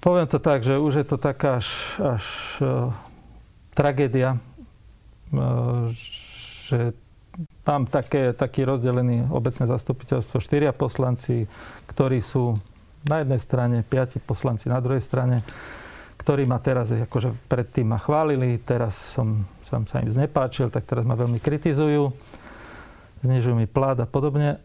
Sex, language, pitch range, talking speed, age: male, Slovak, 120-140 Hz, 135 wpm, 40-59